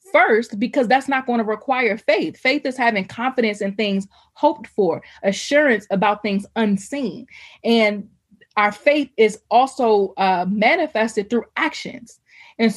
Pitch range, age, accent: 190-235 Hz, 20-39, American